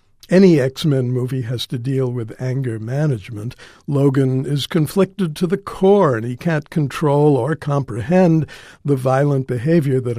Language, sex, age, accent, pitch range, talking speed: English, male, 60-79, American, 125-160 Hz, 145 wpm